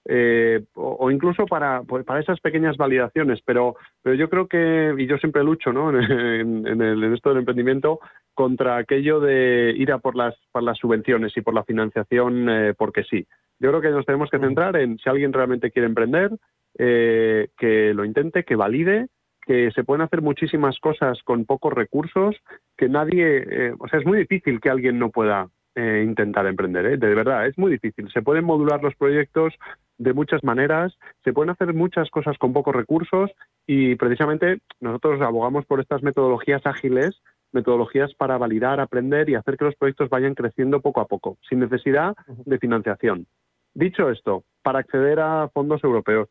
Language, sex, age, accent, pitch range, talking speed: Spanish, male, 30-49, Spanish, 115-145 Hz, 185 wpm